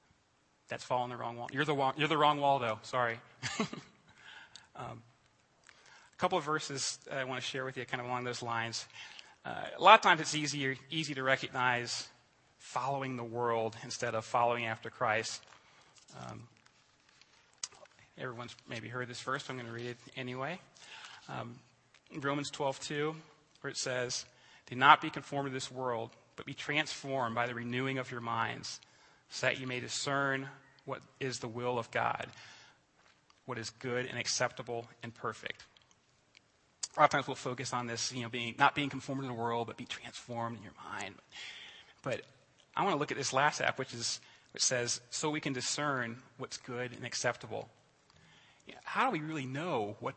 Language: English